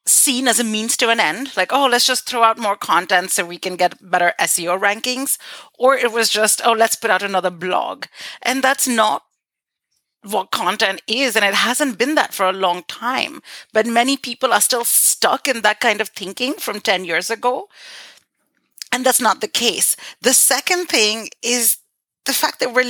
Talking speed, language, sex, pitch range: 195 wpm, English, female, 210-255 Hz